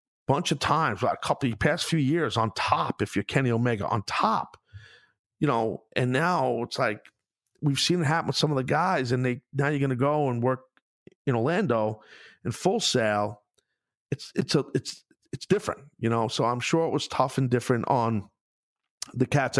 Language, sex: English, male